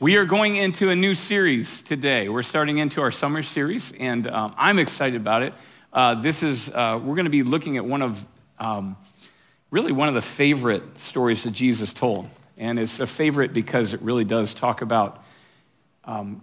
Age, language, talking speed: 50-69, English, 190 wpm